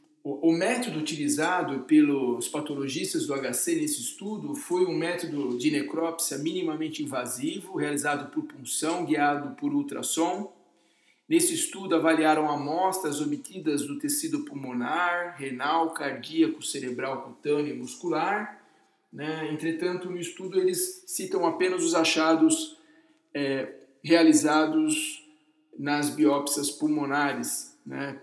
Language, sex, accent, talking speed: English, male, Brazilian, 110 wpm